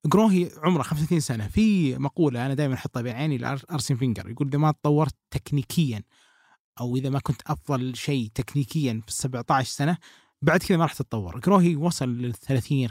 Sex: male